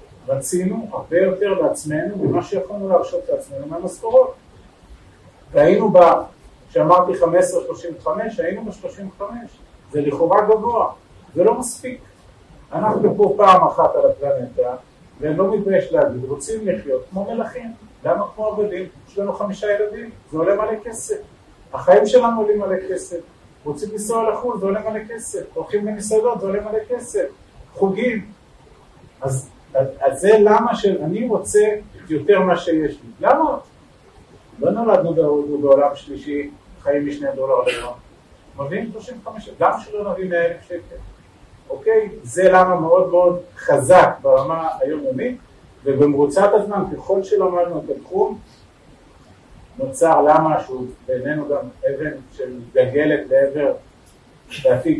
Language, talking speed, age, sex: Hebrew, 130 wpm, 40-59, male